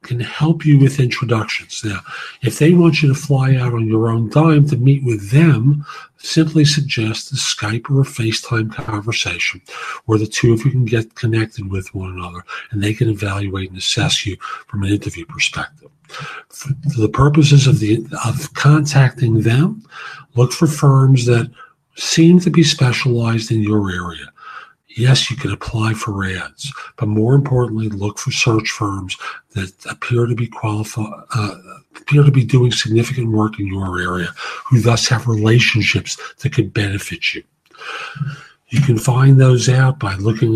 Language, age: English, 50-69